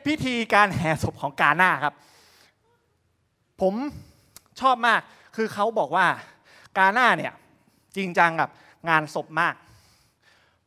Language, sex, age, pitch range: Thai, male, 20-39, 150-205 Hz